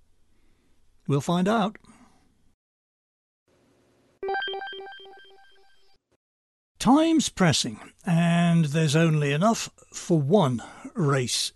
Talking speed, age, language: 60 wpm, 60-79, English